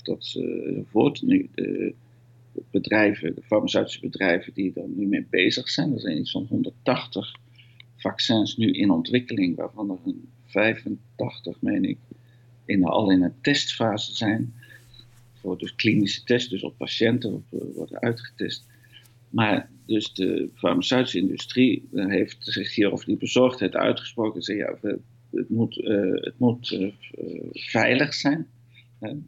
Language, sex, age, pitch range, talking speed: Dutch, male, 50-69, 110-130 Hz, 145 wpm